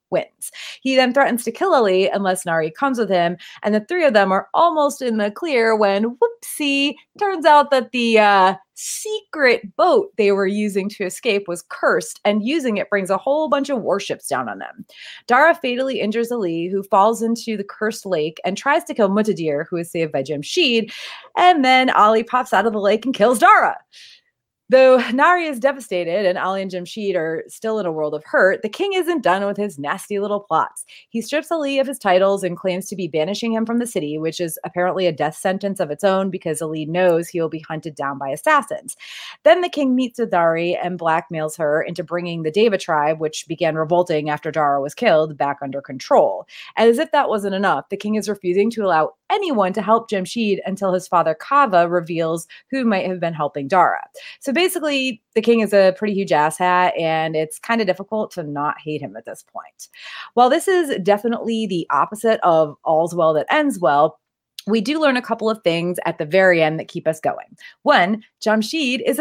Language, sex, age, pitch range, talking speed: English, female, 30-49, 170-255 Hz, 210 wpm